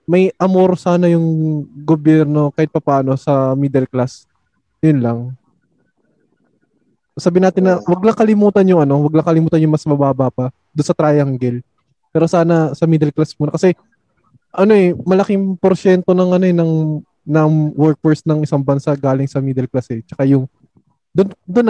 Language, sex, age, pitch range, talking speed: Filipino, male, 20-39, 140-180 Hz, 160 wpm